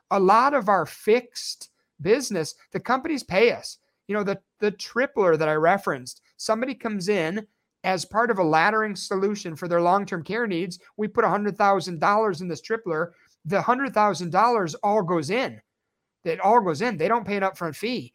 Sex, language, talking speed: male, English, 175 wpm